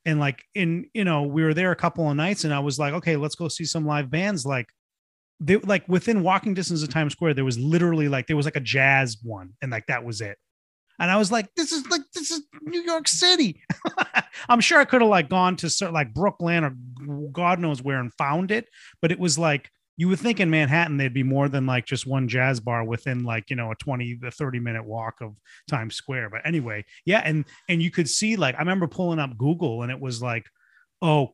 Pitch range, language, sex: 125-170 Hz, English, male